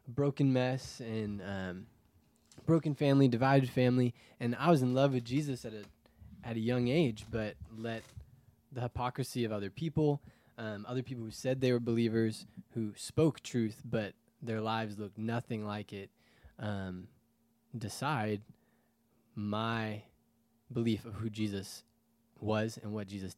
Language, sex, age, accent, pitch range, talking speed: English, male, 20-39, American, 105-125 Hz, 145 wpm